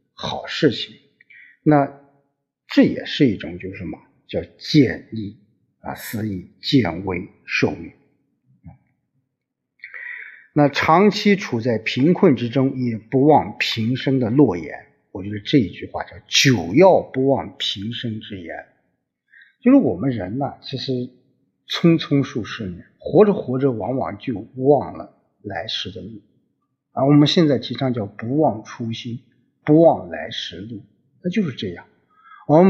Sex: male